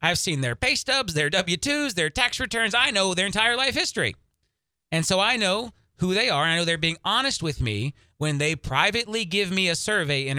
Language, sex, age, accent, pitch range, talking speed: English, male, 30-49, American, 130-185 Hz, 230 wpm